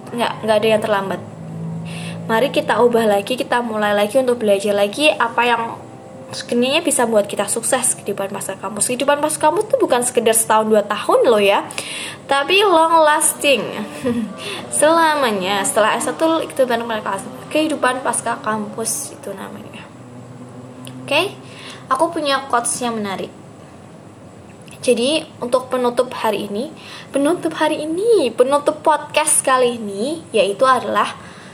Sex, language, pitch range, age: female, Indonesian, 210-270 Hz, 20-39